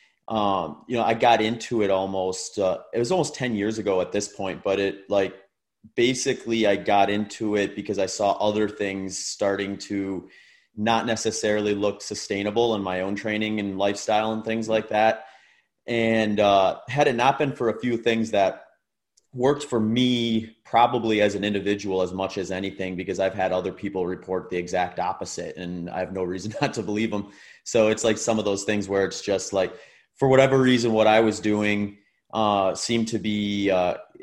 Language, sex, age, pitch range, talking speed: English, male, 30-49, 95-110 Hz, 200 wpm